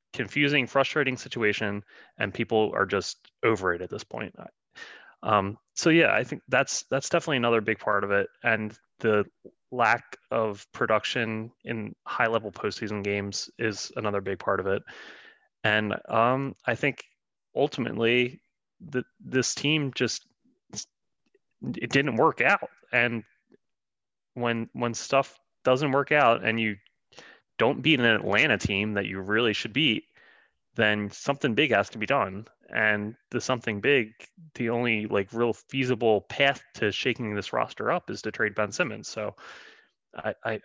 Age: 20-39